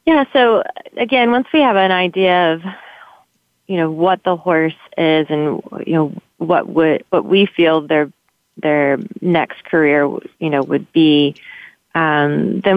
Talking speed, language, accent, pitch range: 155 wpm, English, American, 145-165 Hz